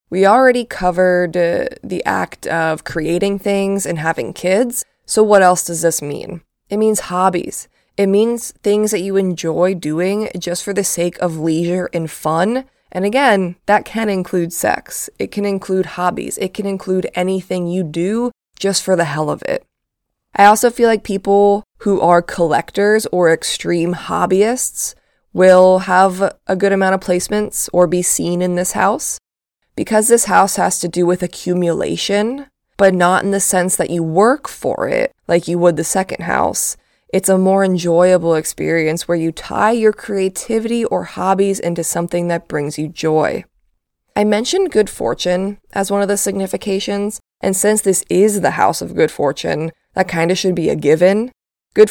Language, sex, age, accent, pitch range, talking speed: English, female, 20-39, American, 170-200 Hz, 175 wpm